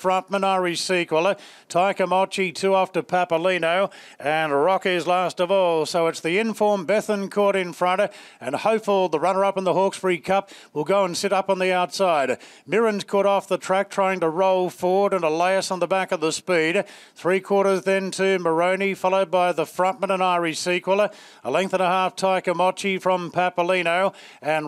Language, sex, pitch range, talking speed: English, male, 185-205 Hz, 180 wpm